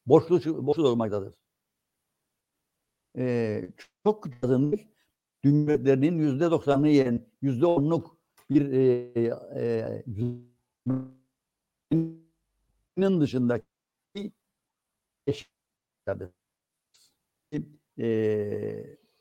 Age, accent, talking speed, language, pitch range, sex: 60-79, native, 65 wpm, Turkish, 120-170 Hz, male